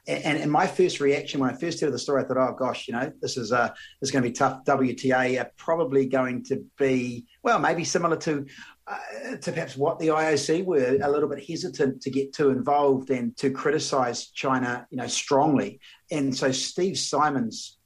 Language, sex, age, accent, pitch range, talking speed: English, male, 40-59, Australian, 135-170 Hz, 210 wpm